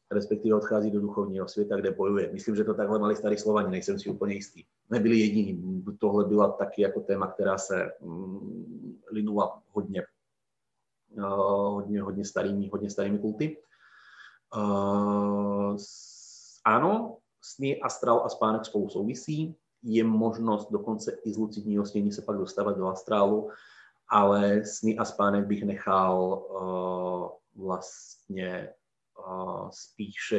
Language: Czech